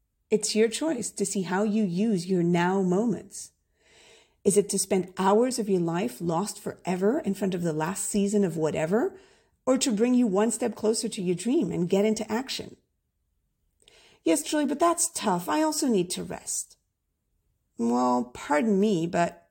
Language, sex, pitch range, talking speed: English, female, 185-240 Hz, 175 wpm